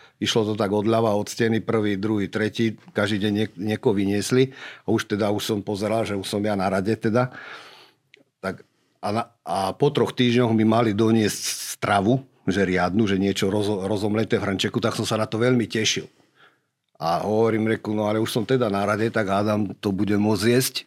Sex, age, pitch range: male, 50-69, 100-115 Hz